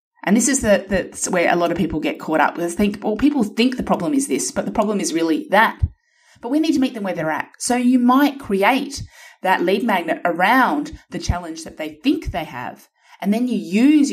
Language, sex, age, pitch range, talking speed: English, female, 30-49, 190-290 Hz, 240 wpm